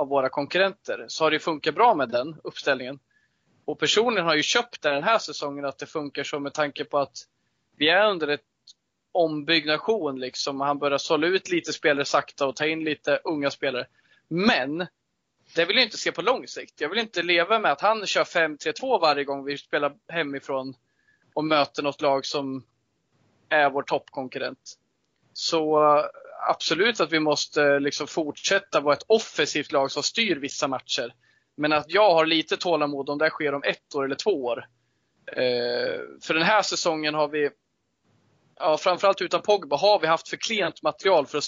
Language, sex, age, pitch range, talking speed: Swedish, male, 20-39, 140-170 Hz, 180 wpm